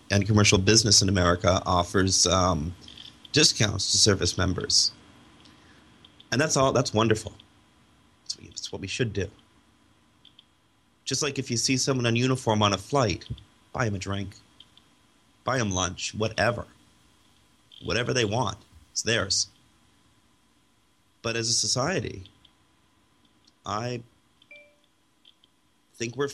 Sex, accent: male, American